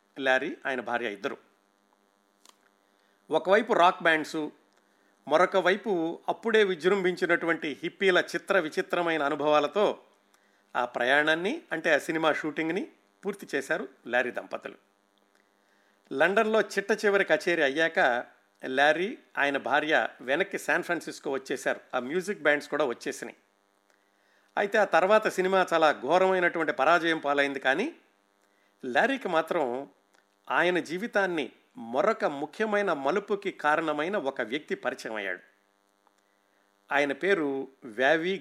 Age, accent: 50-69, native